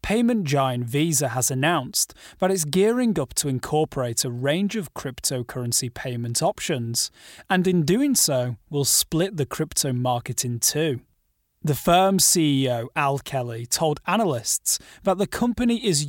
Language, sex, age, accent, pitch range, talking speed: English, male, 30-49, British, 130-180 Hz, 145 wpm